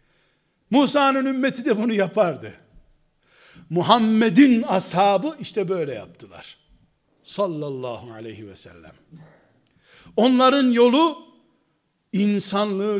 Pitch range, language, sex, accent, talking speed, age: 175-235 Hz, Turkish, male, native, 80 wpm, 60-79